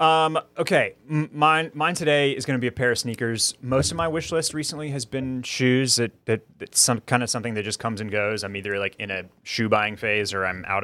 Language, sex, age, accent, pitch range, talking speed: English, male, 30-49, American, 100-125 Hz, 250 wpm